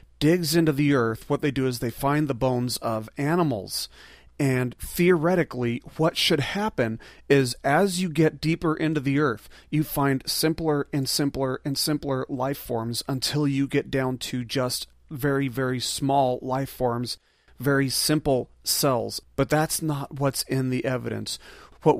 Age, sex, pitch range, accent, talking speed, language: 40-59, male, 130-160 Hz, American, 160 wpm, English